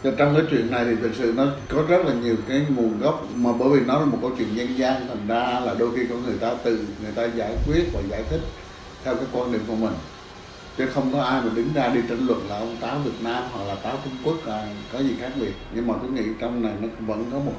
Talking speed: 280 wpm